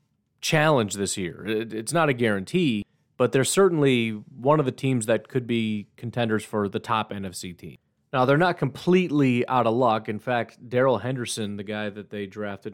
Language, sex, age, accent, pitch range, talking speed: English, male, 30-49, American, 105-120 Hz, 185 wpm